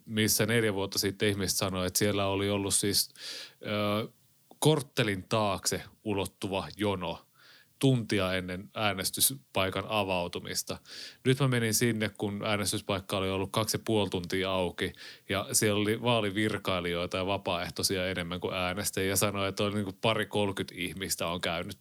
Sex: male